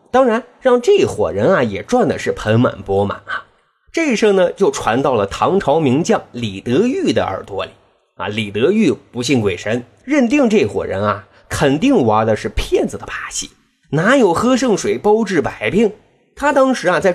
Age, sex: 30-49, male